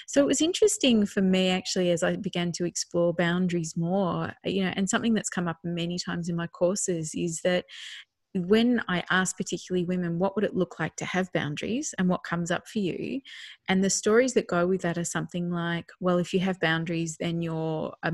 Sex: female